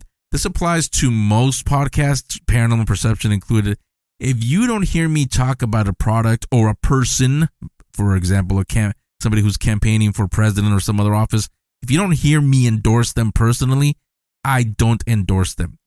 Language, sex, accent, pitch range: English, male, American, 95-120 Hz